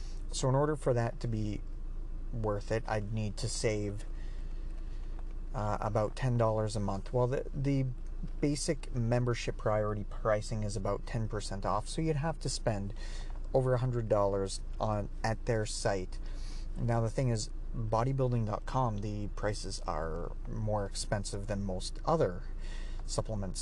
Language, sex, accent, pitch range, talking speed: English, male, American, 100-120 Hz, 135 wpm